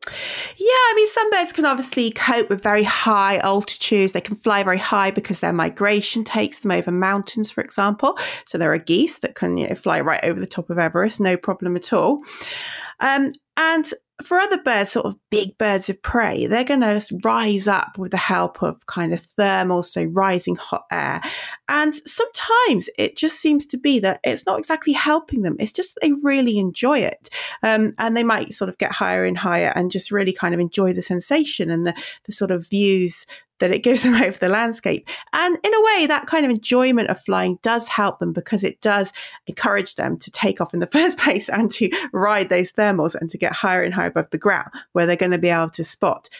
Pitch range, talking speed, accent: 185-290 Hz, 215 wpm, British